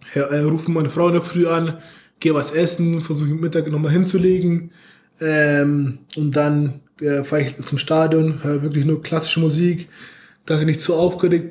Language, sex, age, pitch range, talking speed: German, male, 20-39, 145-165 Hz, 195 wpm